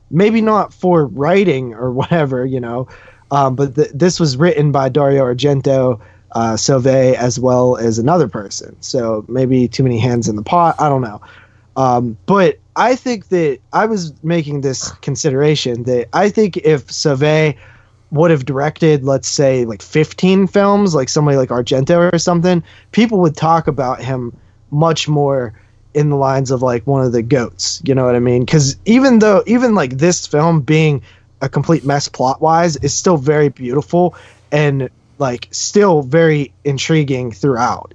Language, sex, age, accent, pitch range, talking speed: English, male, 20-39, American, 125-160 Hz, 170 wpm